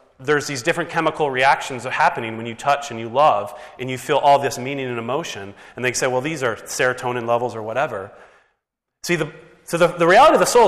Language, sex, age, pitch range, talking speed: English, male, 30-49, 120-165 Hz, 225 wpm